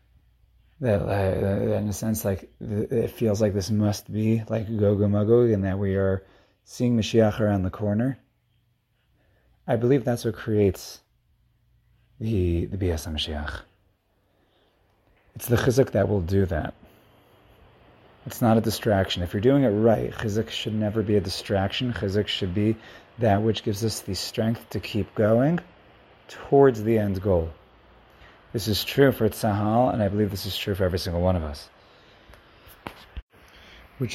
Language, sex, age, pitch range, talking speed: English, male, 30-49, 100-115 Hz, 155 wpm